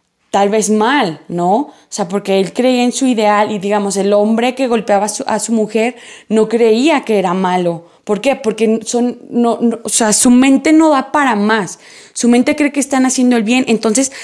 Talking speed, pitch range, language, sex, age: 215 wpm, 205-255 Hz, English, female, 20-39